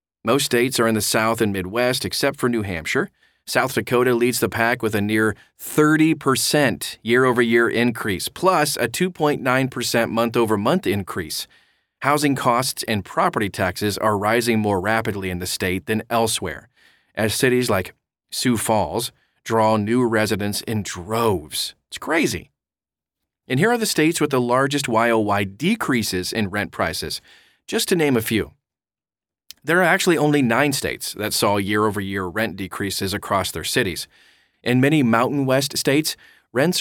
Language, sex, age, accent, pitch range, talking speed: English, male, 30-49, American, 105-135 Hz, 150 wpm